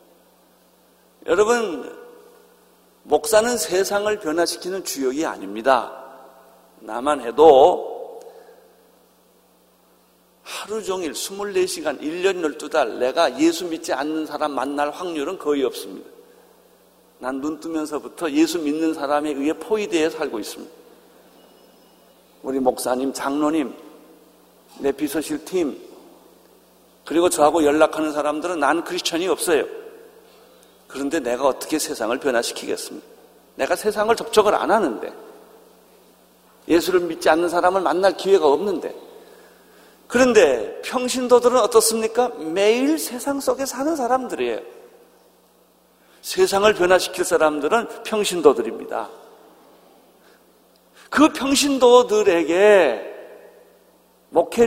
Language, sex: Korean, male